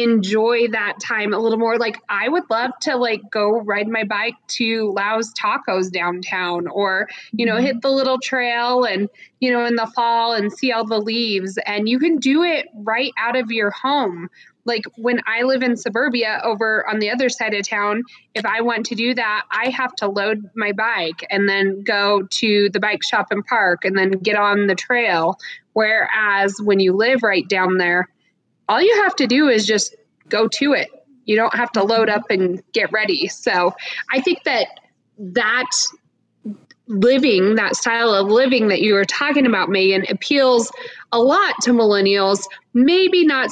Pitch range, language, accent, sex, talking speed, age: 205-245 Hz, English, American, female, 190 wpm, 20-39